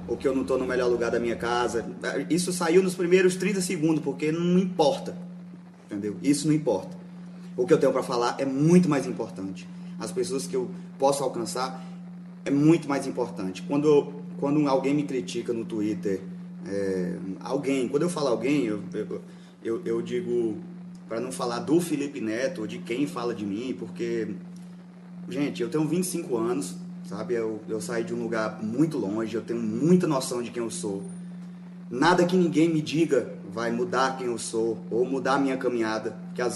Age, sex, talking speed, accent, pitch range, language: 20-39, male, 185 wpm, Brazilian, 135-180 Hz, Portuguese